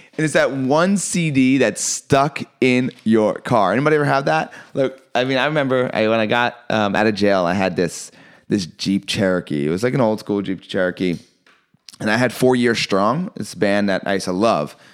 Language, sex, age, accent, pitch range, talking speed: English, male, 30-49, American, 110-150 Hz, 215 wpm